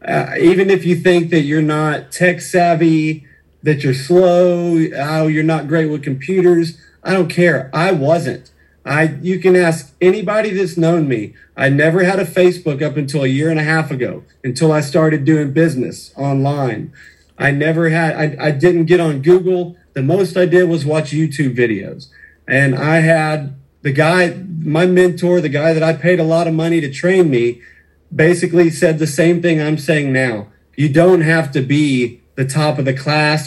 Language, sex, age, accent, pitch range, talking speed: English, male, 40-59, American, 145-175 Hz, 190 wpm